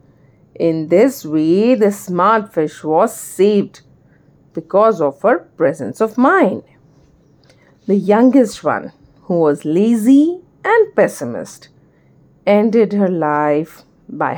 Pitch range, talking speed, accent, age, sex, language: 170-265 Hz, 110 wpm, Indian, 50-69, female, English